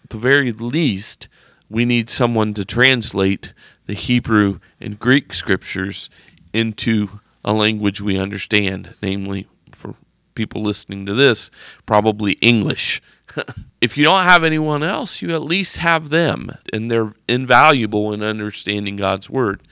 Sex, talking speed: male, 135 wpm